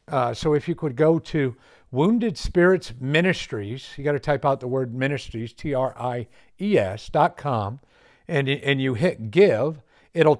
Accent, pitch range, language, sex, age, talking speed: American, 130-165 Hz, English, male, 50-69, 180 wpm